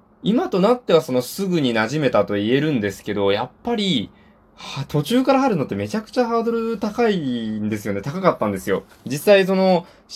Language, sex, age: Japanese, male, 20-39